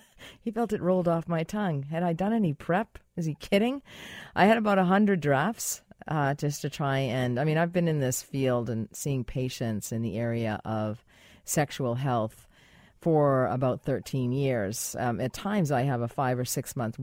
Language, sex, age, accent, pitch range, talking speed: English, female, 40-59, American, 120-155 Hz, 195 wpm